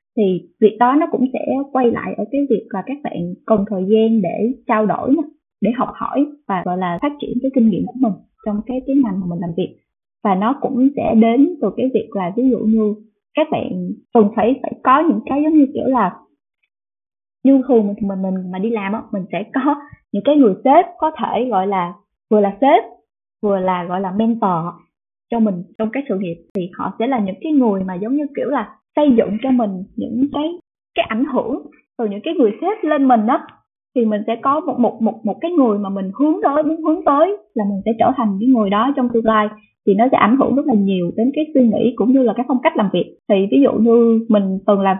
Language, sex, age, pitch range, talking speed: Vietnamese, female, 20-39, 205-270 Hz, 245 wpm